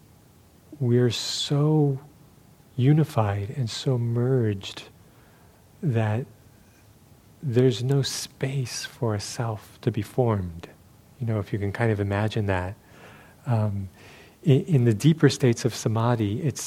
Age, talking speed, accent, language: 40-59, 120 wpm, American, English